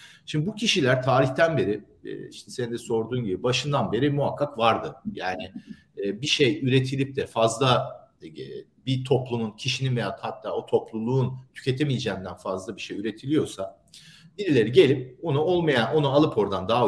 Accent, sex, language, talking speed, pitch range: native, male, Turkish, 145 wpm, 115-150 Hz